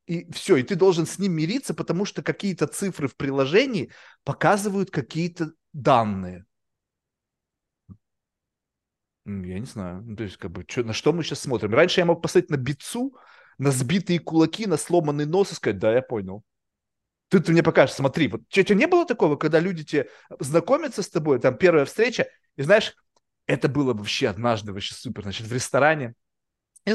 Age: 30-49